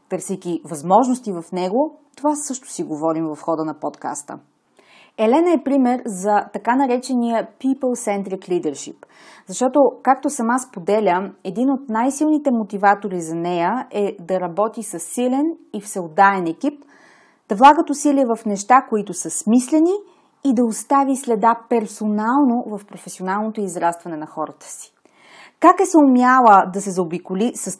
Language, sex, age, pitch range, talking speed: Bulgarian, female, 30-49, 190-265 Hz, 140 wpm